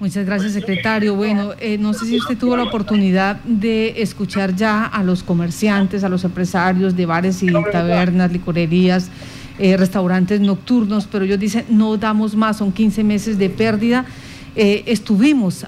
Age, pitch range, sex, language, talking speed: 40-59, 195-225 Hz, female, Spanish, 160 wpm